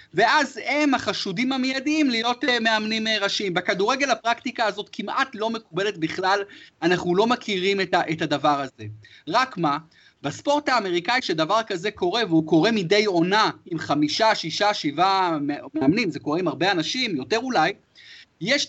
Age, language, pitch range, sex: 30-49, Hebrew, 165-250 Hz, male